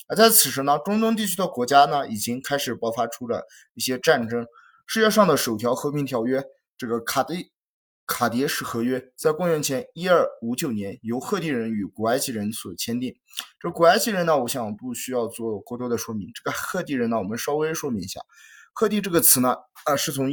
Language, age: Chinese, 20-39